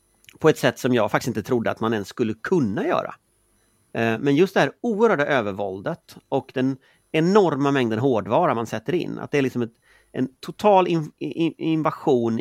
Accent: Swedish